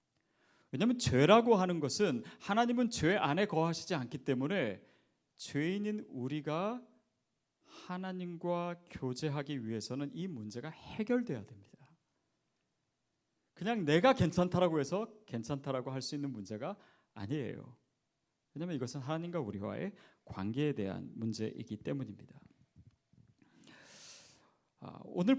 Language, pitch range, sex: Korean, 120-175 Hz, male